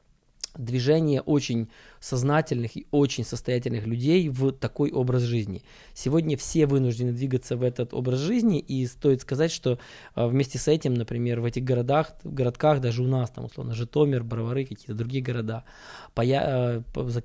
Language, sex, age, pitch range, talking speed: Russian, male, 20-39, 120-145 Hz, 150 wpm